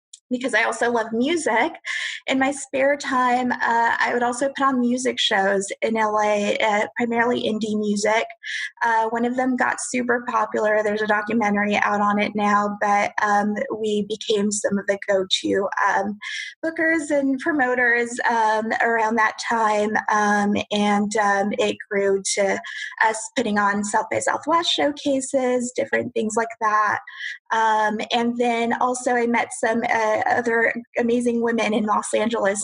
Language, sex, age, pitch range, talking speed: English, female, 20-39, 210-255 Hz, 155 wpm